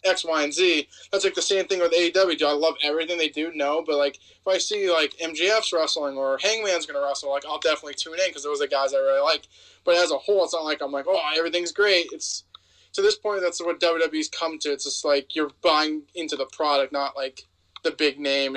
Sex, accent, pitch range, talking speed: male, American, 140-175 Hz, 250 wpm